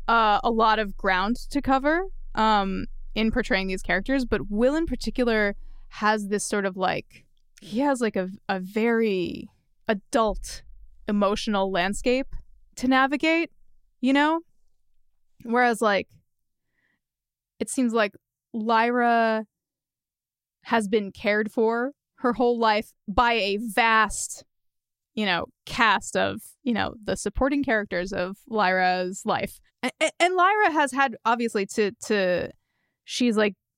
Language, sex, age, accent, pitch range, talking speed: English, female, 20-39, American, 195-245 Hz, 130 wpm